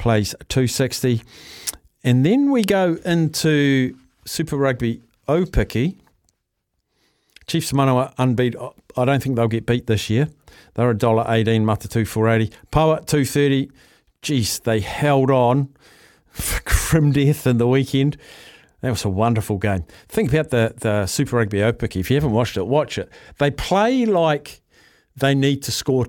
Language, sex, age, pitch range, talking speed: English, male, 50-69, 115-140 Hz, 155 wpm